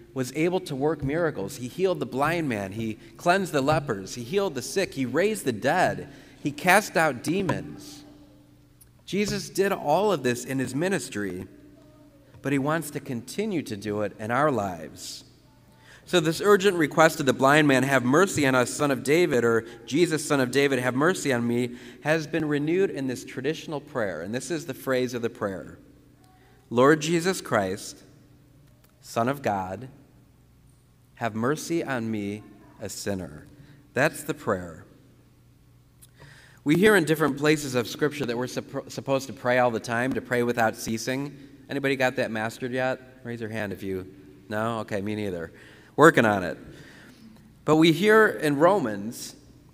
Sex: male